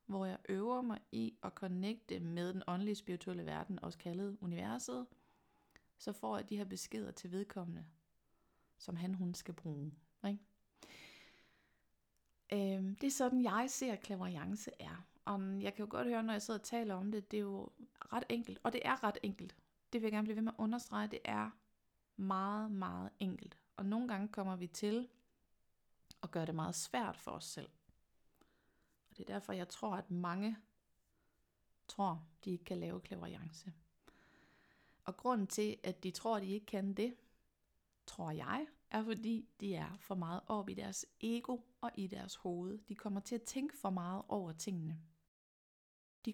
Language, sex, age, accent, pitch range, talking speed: Danish, female, 30-49, native, 180-220 Hz, 180 wpm